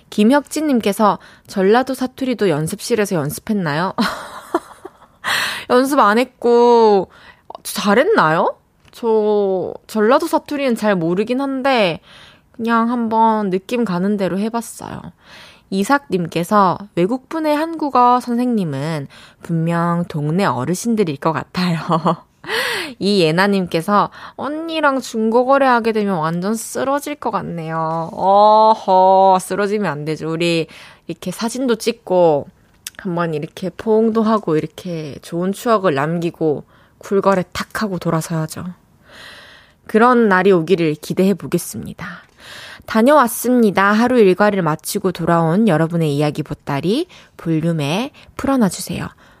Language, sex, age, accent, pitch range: Korean, female, 20-39, native, 170-235 Hz